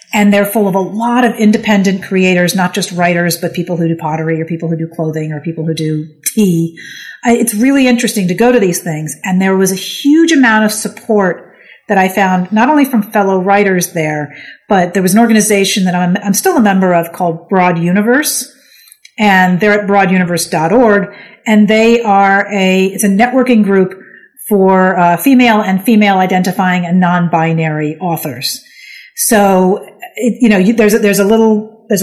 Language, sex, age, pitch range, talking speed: English, female, 40-59, 175-220 Hz, 185 wpm